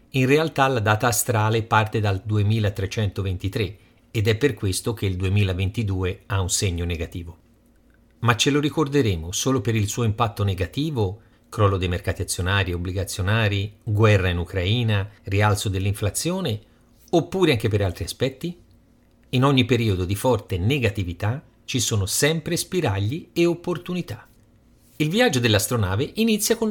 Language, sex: Italian, male